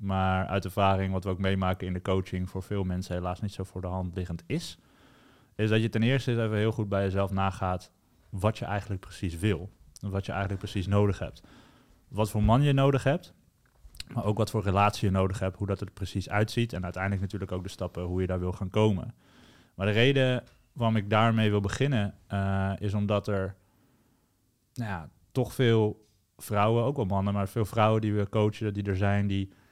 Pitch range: 100-115 Hz